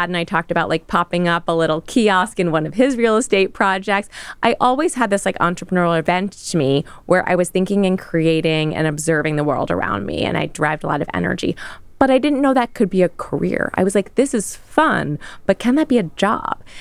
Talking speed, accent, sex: 235 wpm, American, female